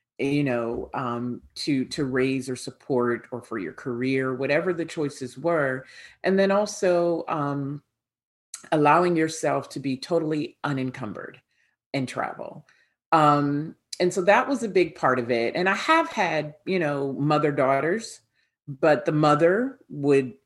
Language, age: English, 40-59